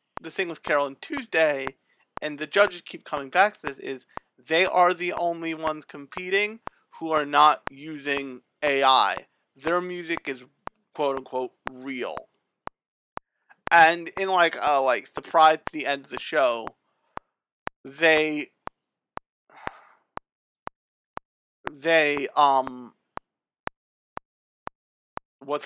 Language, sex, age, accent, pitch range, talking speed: English, male, 40-59, American, 140-180 Hz, 110 wpm